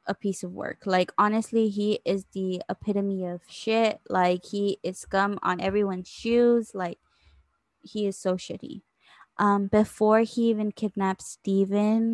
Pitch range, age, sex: 180-210 Hz, 20-39, female